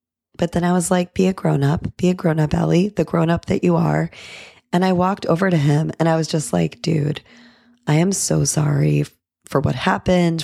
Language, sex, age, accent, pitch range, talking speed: English, female, 30-49, American, 150-185 Hz, 205 wpm